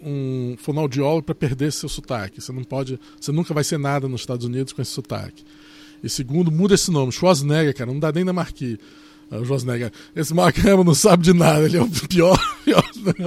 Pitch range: 140-200 Hz